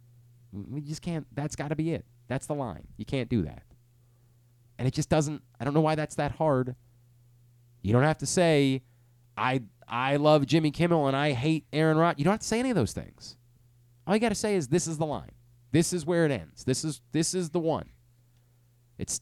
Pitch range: 110-140 Hz